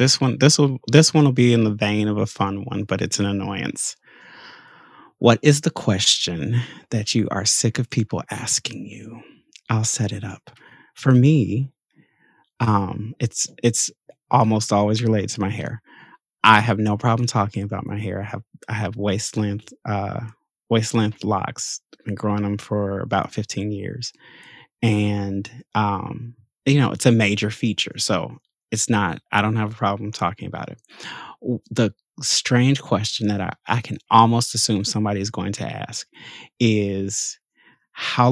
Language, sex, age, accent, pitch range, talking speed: English, male, 30-49, American, 105-130 Hz, 170 wpm